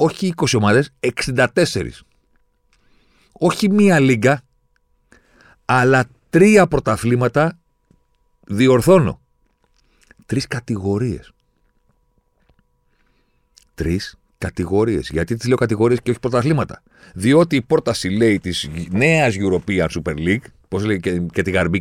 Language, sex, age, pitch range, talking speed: Greek, male, 50-69, 85-125 Hz, 100 wpm